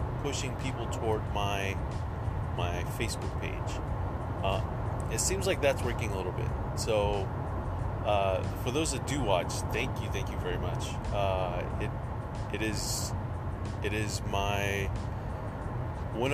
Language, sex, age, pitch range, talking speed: English, male, 30-49, 100-115 Hz, 135 wpm